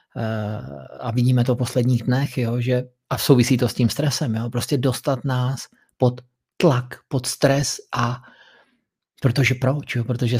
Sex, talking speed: male, 135 wpm